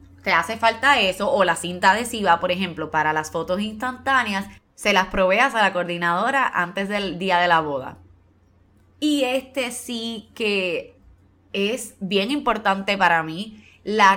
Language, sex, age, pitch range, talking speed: Spanish, female, 20-39, 180-235 Hz, 155 wpm